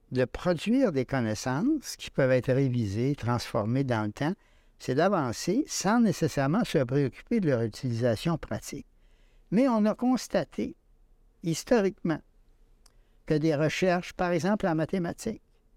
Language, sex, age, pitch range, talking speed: French, male, 60-79, 130-180 Hz, 130 wpm